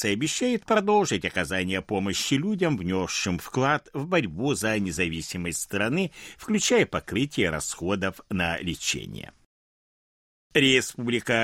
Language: Russian